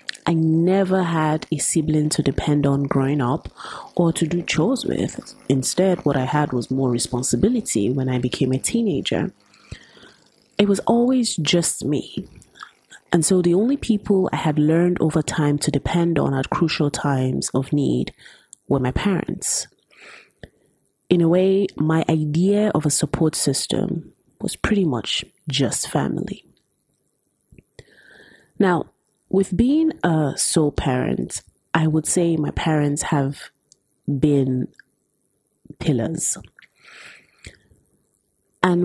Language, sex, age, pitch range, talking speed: English, female, 30-49, 140-180 Hz, 125 wpm